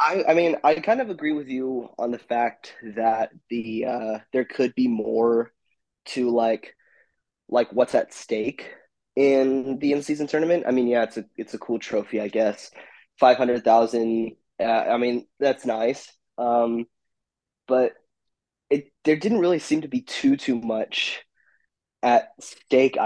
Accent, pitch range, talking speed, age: American, 115-140 Hz, 165 wpm, 20-39